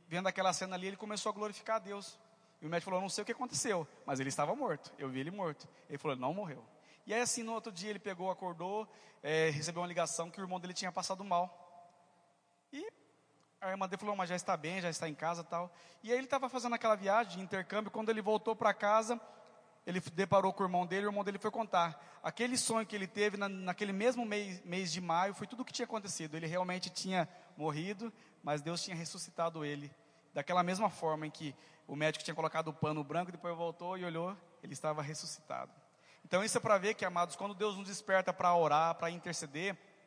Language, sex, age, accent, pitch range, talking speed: Portuguese, male, 20-39, Brazilian, 160-200 Hz, 230 wpm